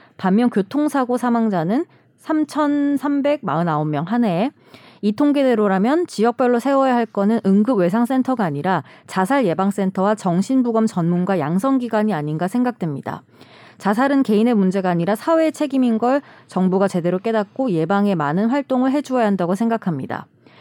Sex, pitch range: female, 180-255 Hz